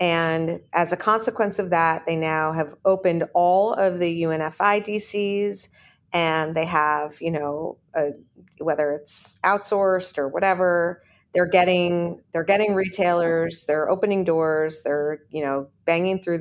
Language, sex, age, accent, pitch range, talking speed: English, female, 40-59, American, 155-185 Hz, 145 wpm